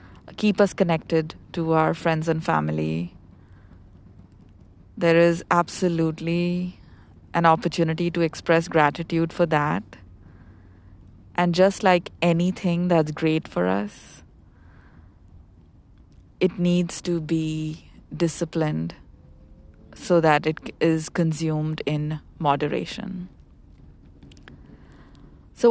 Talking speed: 90 wpm